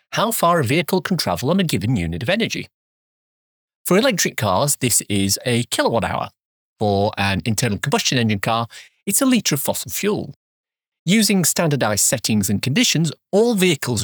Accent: British